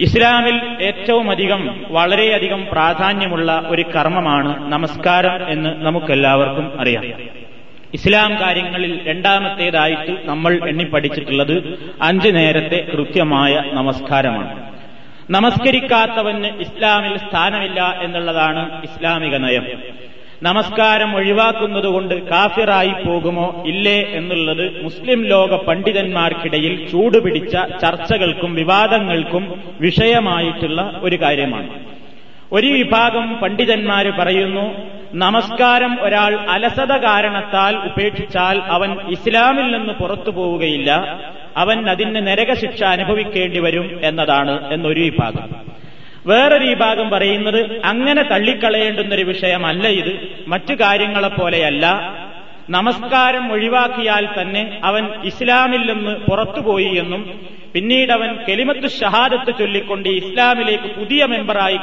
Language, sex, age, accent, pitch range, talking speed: Malayalam, male, 30-49, native, 165-215 Hz, 85 wpm